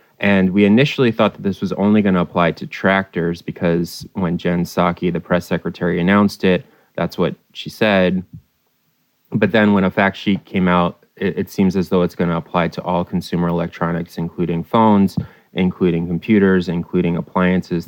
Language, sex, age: English, male, 20-39